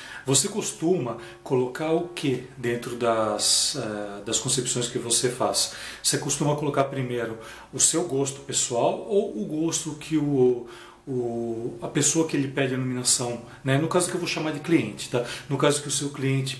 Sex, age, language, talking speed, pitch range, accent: male, 40-59, Portuguese, 175 wpm, 120-150 Hz, Brazilian